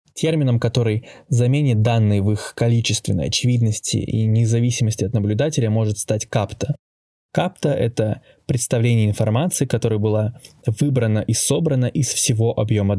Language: Russian